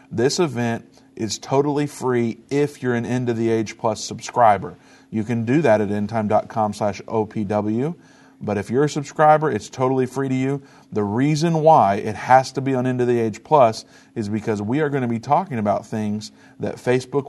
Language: English